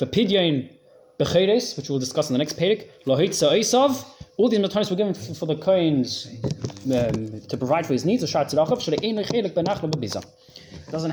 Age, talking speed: 20-39, 130 wpm